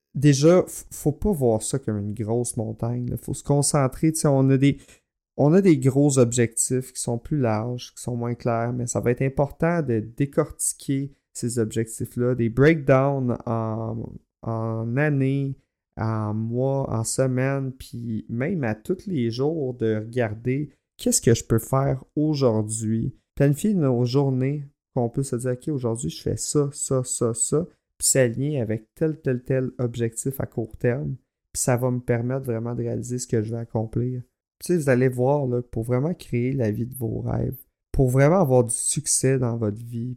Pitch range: 115-135 Hz